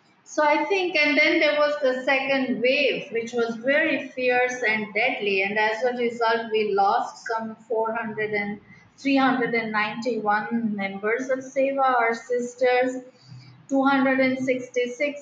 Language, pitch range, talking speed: English, 210-255 Hz, 125 wpm